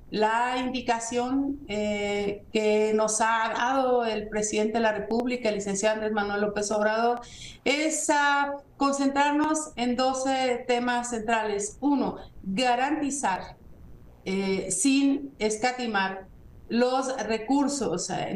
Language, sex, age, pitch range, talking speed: Spanish, female, 50-69, 215-255 Hz, 105 wpm